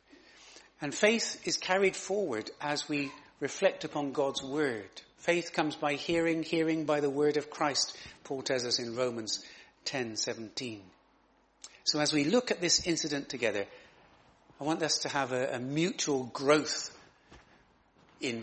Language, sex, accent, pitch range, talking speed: English, male, British, 135-170 Hz, 145 wpm